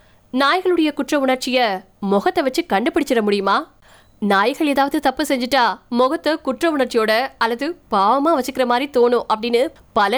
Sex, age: female, 20-39